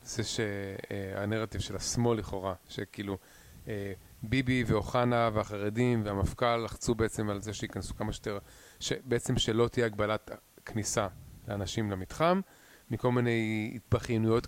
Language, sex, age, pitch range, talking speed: Hebrew, male, 30-49, 105-125 Hz, 110 wpm